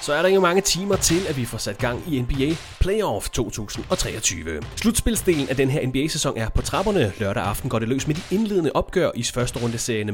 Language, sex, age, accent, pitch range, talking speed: Danish, male, 30-49, native, 110-160 Hz, 215 wpm